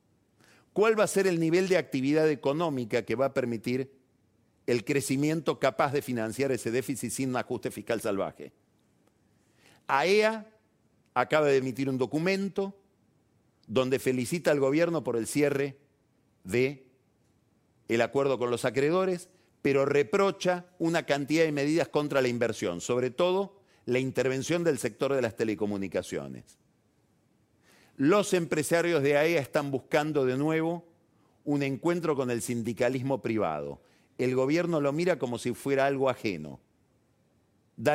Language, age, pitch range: Spanish, 50-69, 120-155 Hz